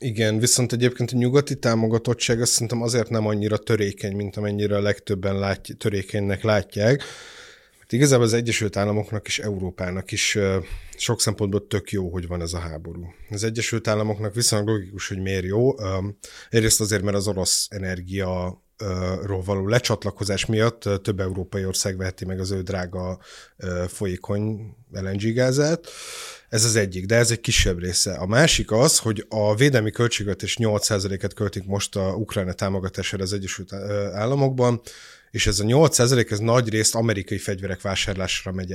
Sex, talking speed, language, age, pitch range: male, 150 wpm, Hungarian, 30-49, 95-115 Hz